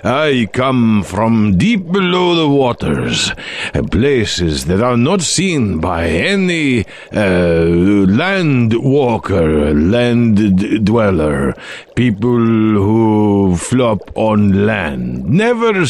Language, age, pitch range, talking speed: English, 60-79, 90-155 Hz, 95 wpm